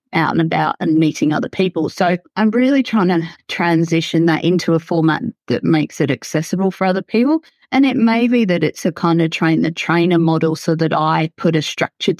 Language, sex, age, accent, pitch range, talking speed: English, female, 30-49, Australian, 160-195 Hz, 210 wpm